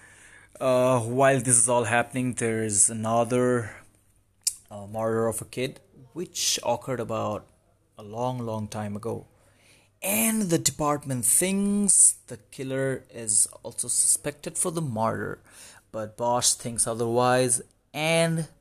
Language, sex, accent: English, male, Indian